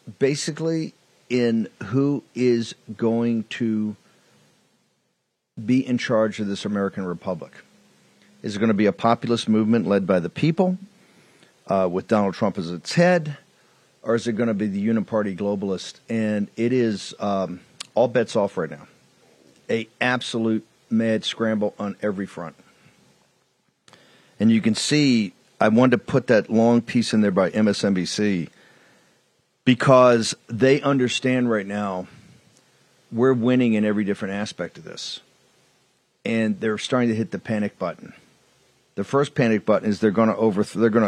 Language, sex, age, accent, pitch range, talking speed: English, male, 50-69, American, 100-120 Hz, 150 wpm